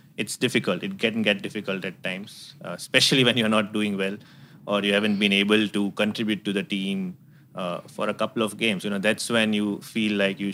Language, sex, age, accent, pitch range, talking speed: English, male, 30-49, Indian, 100-120 Hz, 220 wpm